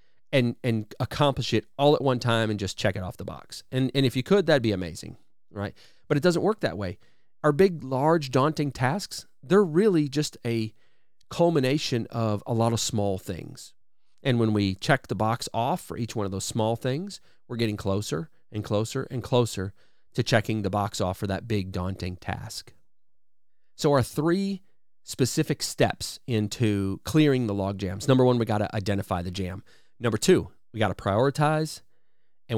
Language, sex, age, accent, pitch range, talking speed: English, male, 40-59, American, 105-140 Hz, 190 wpm